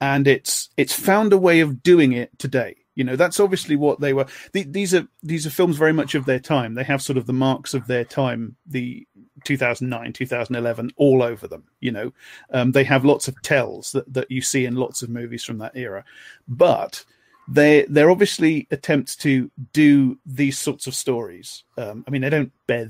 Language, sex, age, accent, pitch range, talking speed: English, male, 40-59, British, 125-150 Hz, 205 wpm